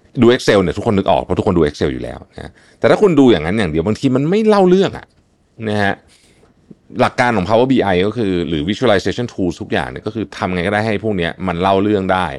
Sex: male